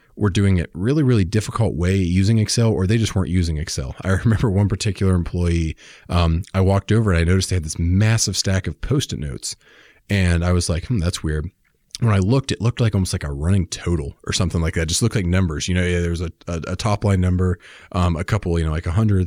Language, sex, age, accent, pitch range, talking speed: English, male, 30-49, American, 85-100 Hz, 250 wpm